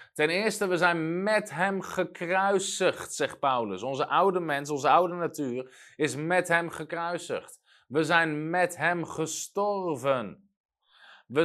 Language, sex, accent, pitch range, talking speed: Dutch, male, Dutch, 130-180 Hz, 130 wpm